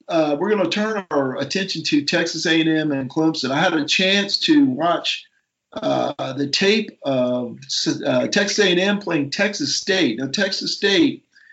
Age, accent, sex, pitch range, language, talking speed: 50-69, American, male, 140-175 Hz, English, 160 wpm